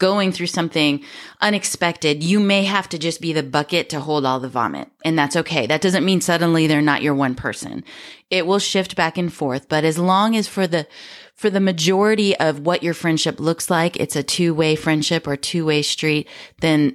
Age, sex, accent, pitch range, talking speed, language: 20-39, female, American, 145-180 Hz, 205 wpm, English